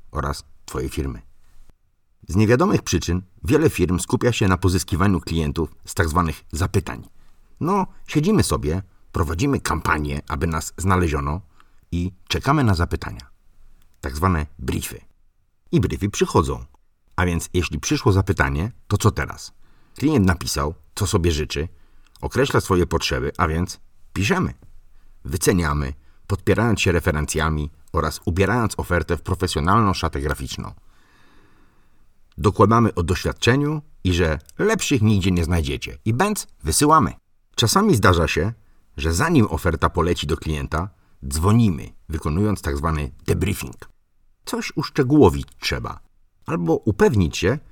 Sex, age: male, 50-69